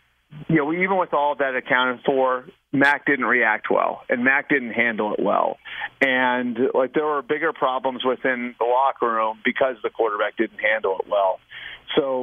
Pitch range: 115-140 Hz